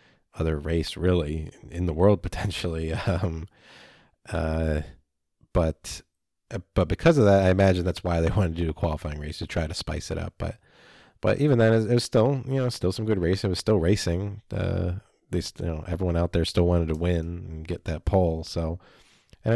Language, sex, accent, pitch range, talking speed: English, male, American, 80-95 Hz, 200 wpm